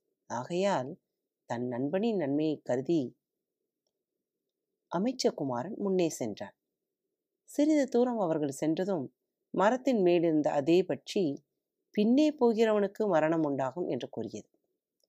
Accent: native